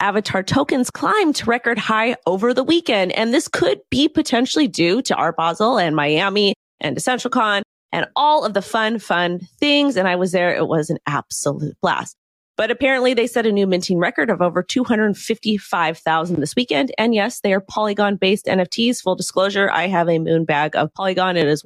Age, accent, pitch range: 30-49, American, 175-230 Hz